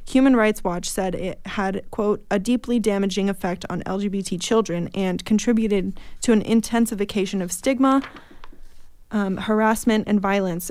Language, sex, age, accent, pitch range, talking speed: English, female, 20-39, American, 205-235 Hz, 140 wpm